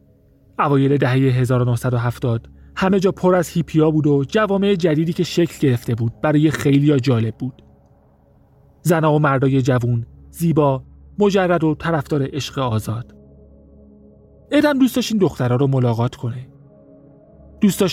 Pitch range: 105-160 Hz